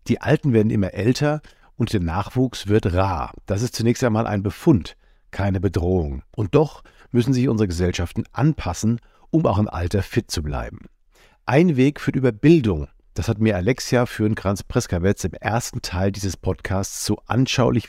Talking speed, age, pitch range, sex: 170 wpm, 50-69, 95-130 Hz, male